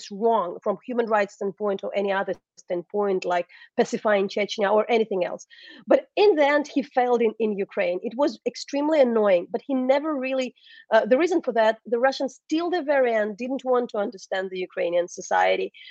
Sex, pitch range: female, 205-255 Hz